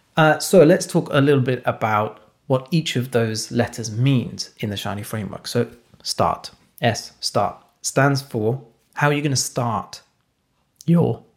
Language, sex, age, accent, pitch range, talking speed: English, male, 30-49, British, 115-140 Hz, 165 wpm